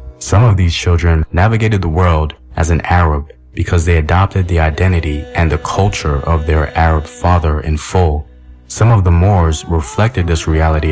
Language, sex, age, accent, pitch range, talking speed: English, male, 30-49, American, 80-90 Hz, 170 wpm